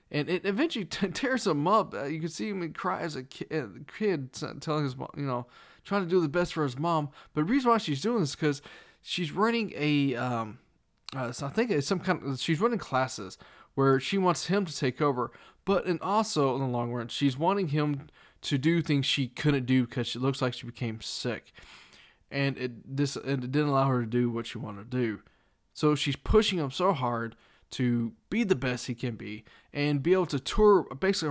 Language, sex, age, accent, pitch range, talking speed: English, male, 20-39, American, 125-175 Hz, 225 wpm